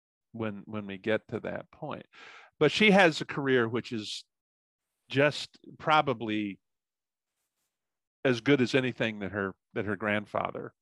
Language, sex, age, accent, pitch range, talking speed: English, male, 50-69, American, 105-120 Hz, 140 wpm